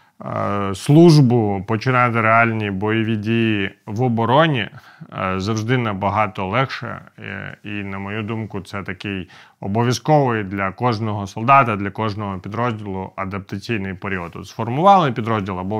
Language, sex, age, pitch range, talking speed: Ukrainian, male, 30-49, 95-120 Hz, 105 wpm